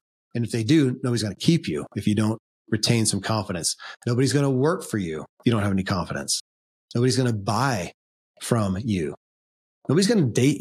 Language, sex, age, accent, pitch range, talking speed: English, male, 30-49, American, 105-140 Hz, 210 wpm